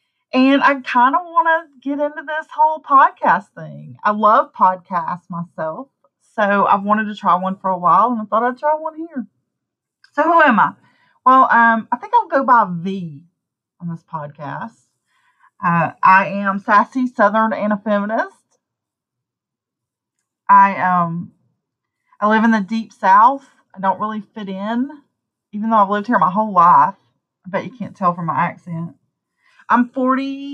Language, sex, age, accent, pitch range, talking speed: English, female, 30-49, American, 195-255 Hz, 165 wpm